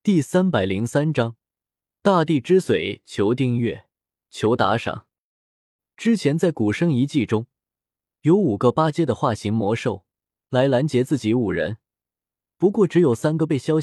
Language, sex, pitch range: Chinese, male, 110-160 Hz